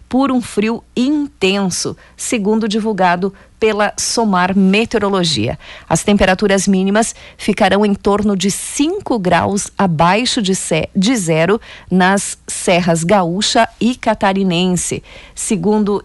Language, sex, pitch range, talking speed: Portuguese, female, 180-220 Hz, 100 wpm